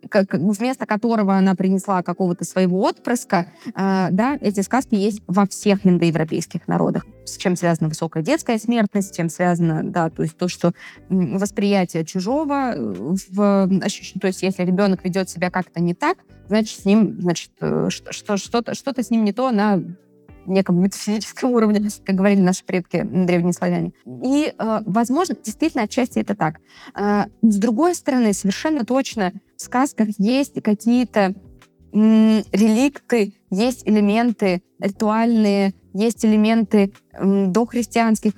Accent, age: native, 20-39